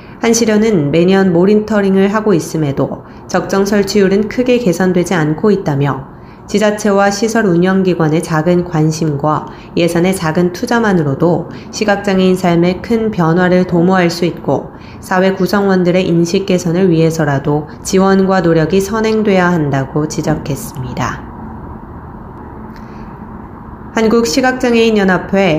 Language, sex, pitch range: Korean, female, 165-205 Hz